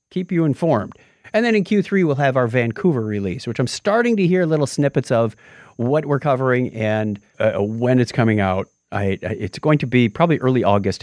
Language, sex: English, male